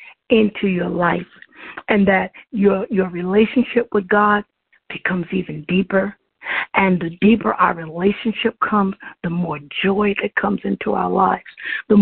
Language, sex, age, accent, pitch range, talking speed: English, female, 50-69, American, 195-235 Hz, 140 wpm